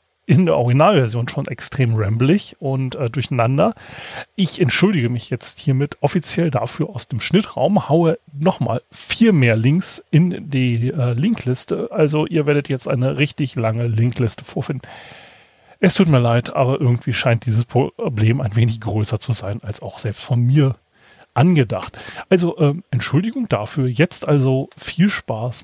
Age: 30-49